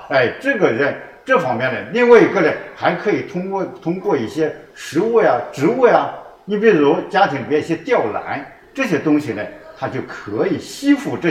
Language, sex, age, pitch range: Chinese, male, 60-79, 155-245 Hz